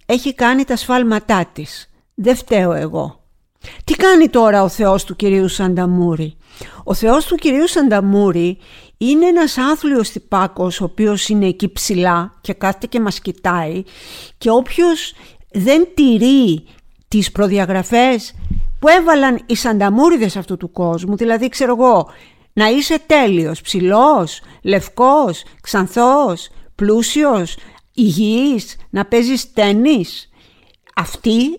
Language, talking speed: Greek, 120 wpm